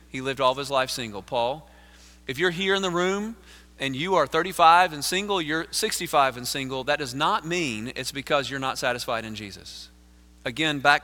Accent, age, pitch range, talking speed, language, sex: American, 40-59, 115-165 Hz, 200 wpm, English, male